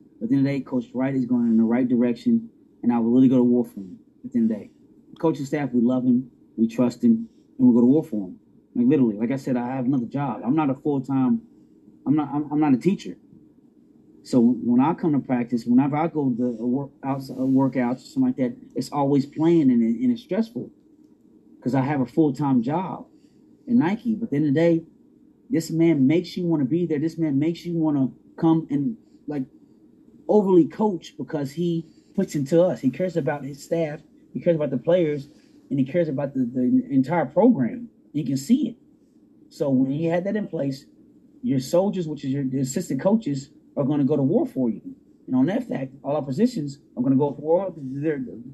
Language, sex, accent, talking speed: English, male, American, 230 wpm